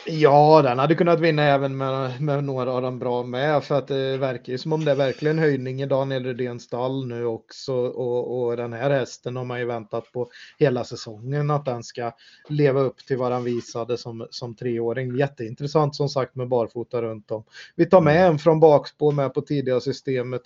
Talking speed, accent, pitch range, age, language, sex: 210 wpm, native, 125-145 Hz, 30-49, Swedish, male